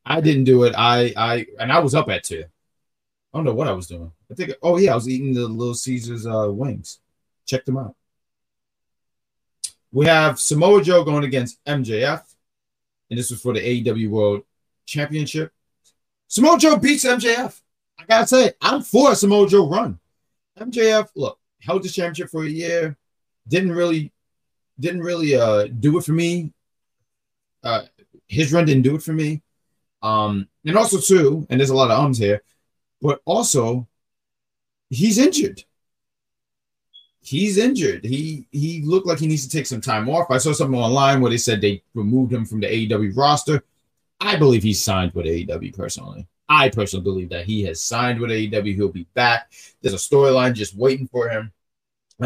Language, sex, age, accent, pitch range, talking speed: English, male, 30-49, American, 115-165 Hz, 180 wpm